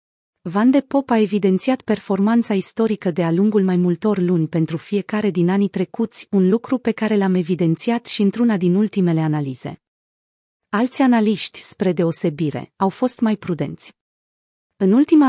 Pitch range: 175-220 Hz